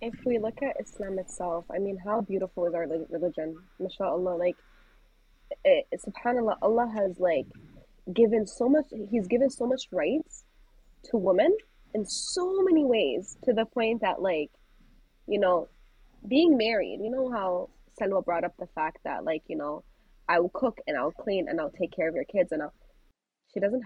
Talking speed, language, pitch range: 180 wpm, English, 190-280 Hz